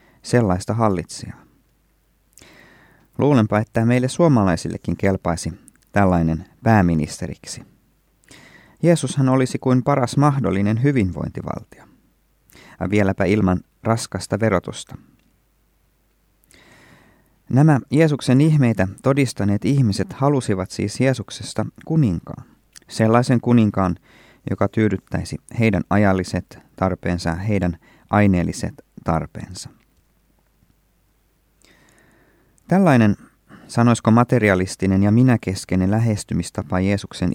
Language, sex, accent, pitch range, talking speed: Finnish, male, native, 95-120 Hz, 75 wpm